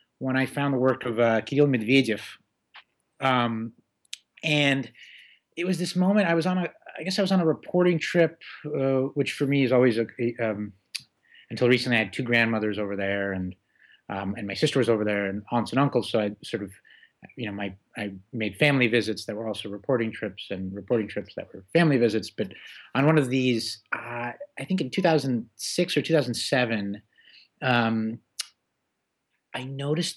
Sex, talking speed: male, 185 wpm